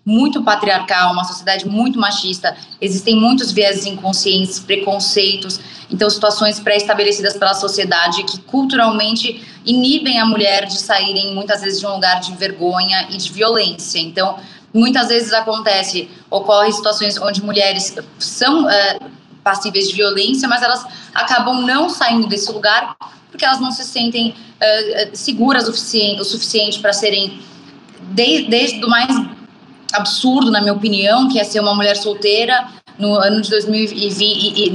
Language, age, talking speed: Portuguese, 20-39, 145 wpm